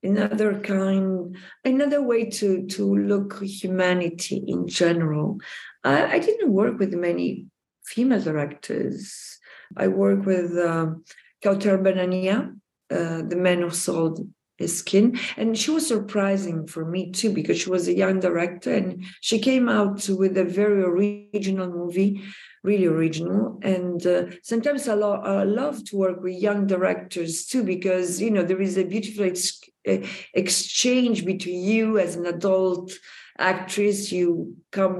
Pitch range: 175-205 Hz